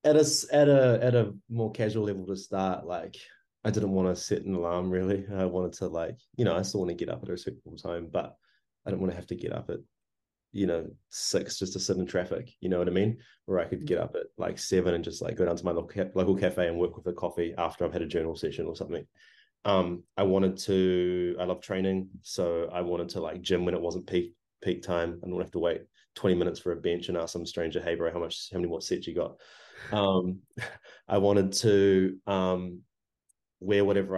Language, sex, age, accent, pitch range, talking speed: English, male, 20-39, Australian, 90-100 Hz, 250 wpm